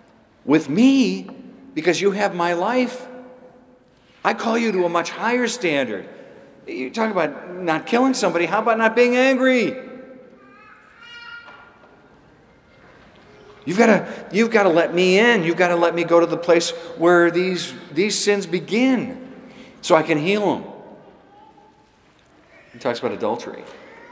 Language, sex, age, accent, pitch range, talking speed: English, male, 50-69, American, 170-255 Hz, 135 wpm